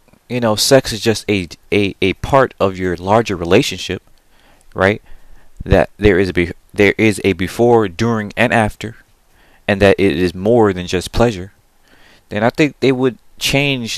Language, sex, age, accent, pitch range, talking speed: English, male, 30-49, American, 90-115 Hz, 170 wpm